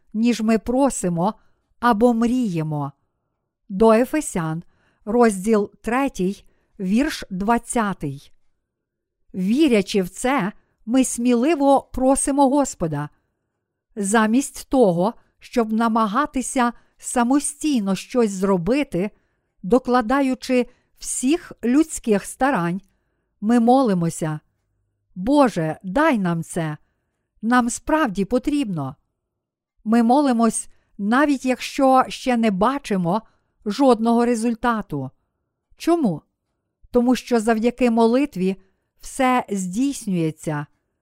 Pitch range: 195-255 Hz